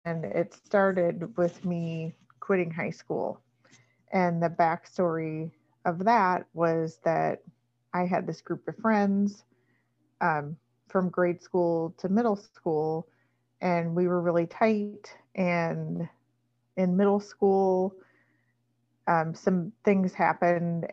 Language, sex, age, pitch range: English, female, 30-49, 155-185 Hz